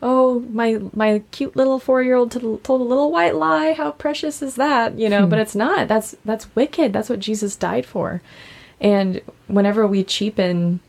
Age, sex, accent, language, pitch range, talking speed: 20-39, female, American, English, 170-205 Hz, 175 wpm